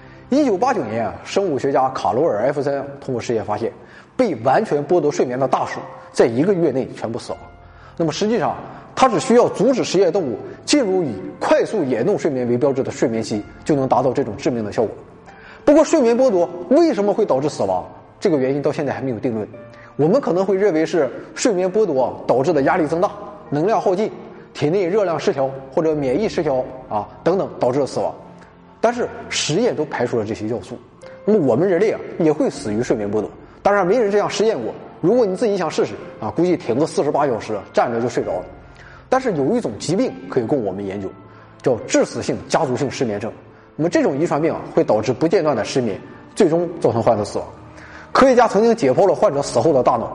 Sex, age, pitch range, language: male, 20-39, 115-195 Hz, Chinese